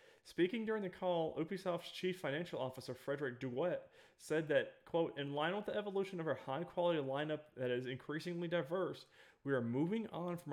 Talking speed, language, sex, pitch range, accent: 175 wpm, English, male, 125-165 Hz, American